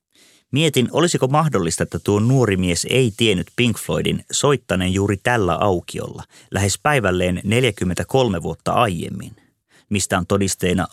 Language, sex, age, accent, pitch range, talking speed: Finnish, male, 30-49, native, 95-125 Hz, 125 wpm